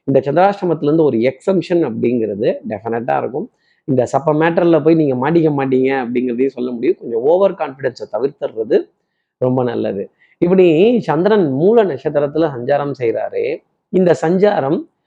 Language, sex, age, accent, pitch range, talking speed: Tamil, male, 30-49, native, 135-185 Hz, 125 wpm